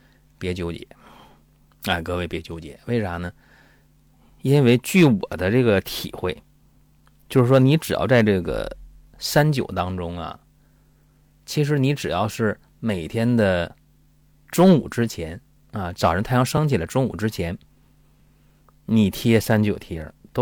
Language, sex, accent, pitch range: Chinese, male, native, 85-135 Hz